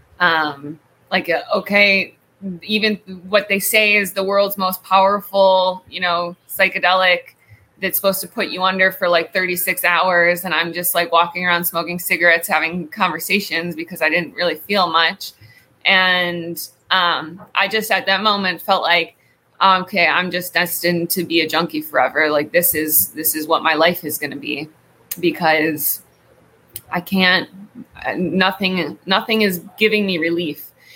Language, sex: English, female